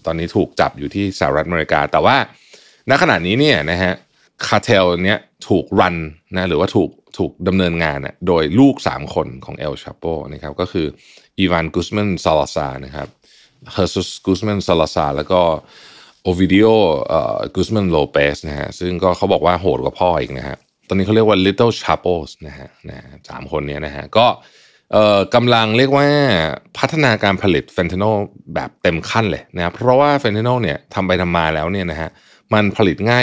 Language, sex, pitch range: Thai, male, 80-110 Hz